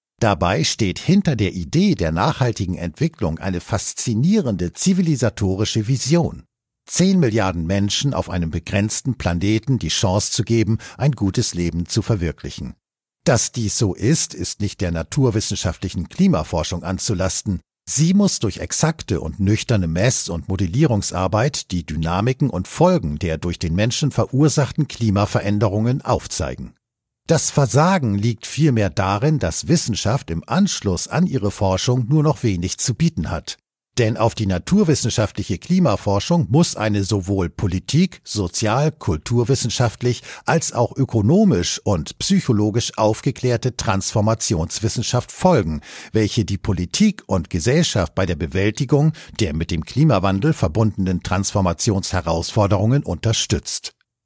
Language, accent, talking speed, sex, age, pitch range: German, German, 120 wpm, male, 50-69, 95-135 Hz